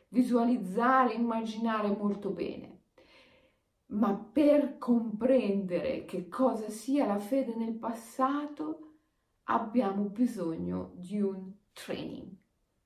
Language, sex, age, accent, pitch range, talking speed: Italian, female, 40-59, native, 180-260 Hz, 90 wpm